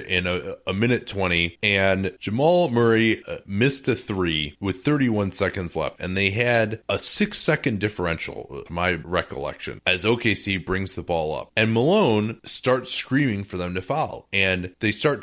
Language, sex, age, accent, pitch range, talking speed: English, male, 30-49, American, 95-135 Hz, 160 wpm